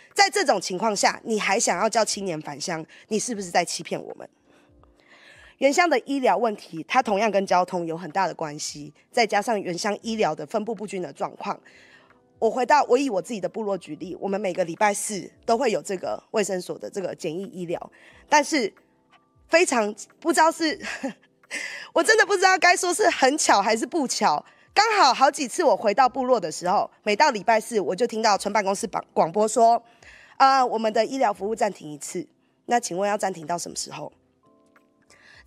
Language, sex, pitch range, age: Chinese, female, 190-260 Hz, 20-39